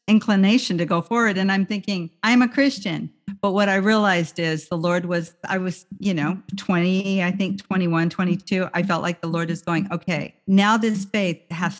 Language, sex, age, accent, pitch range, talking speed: English, female, 50-69, American, 160-195 Hz, 200 wpm